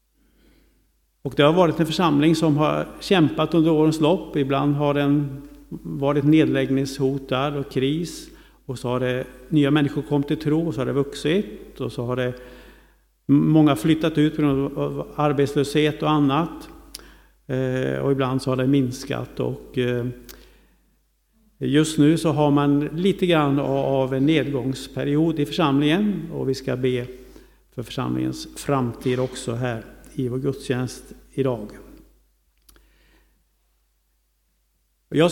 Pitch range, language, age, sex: 130-155 Hz, Swedish, 50-69, male